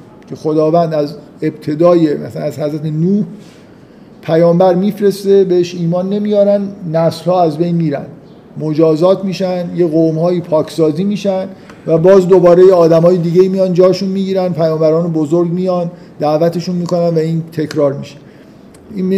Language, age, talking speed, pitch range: Persian, 50-69, 140 wpm, 160-190 Hz